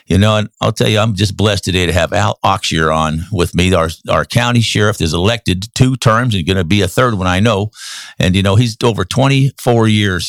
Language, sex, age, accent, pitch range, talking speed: English, male, 50-69, American, 100-130 Hz, 240 wpm